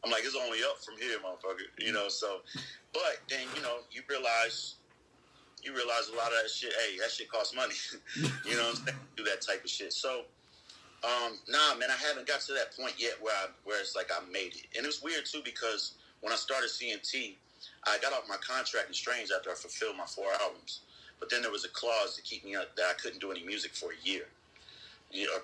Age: 30-49